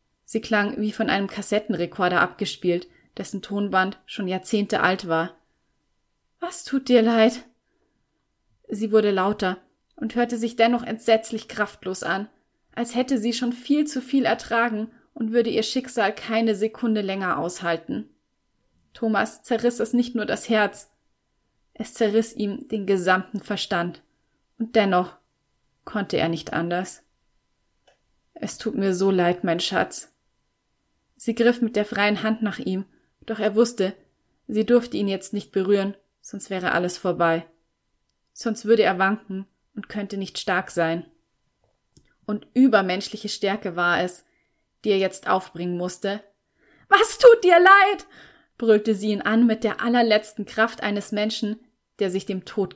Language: German